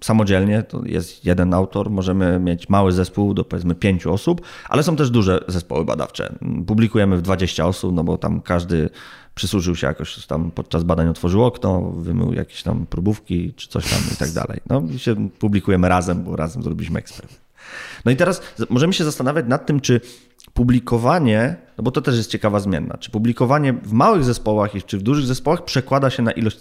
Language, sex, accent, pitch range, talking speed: Polish, male, native, 95-125 Hz, 190 wpm